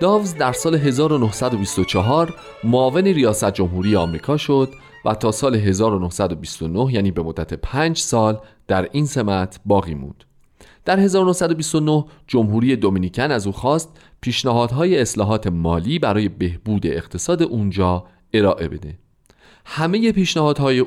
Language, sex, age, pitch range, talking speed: Persian, male, 40-59, 95-145 Hz, 120 wpm